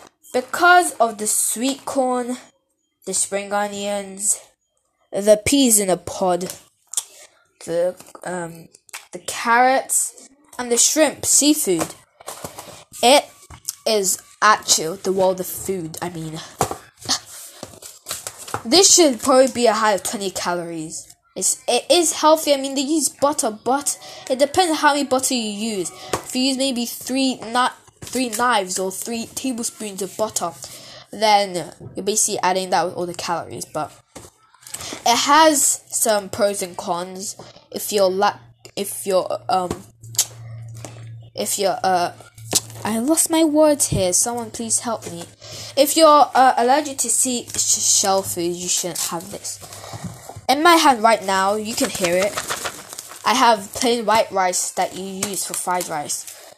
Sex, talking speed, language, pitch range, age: female, 145 wpm, English, 180-265 Hz, 10-29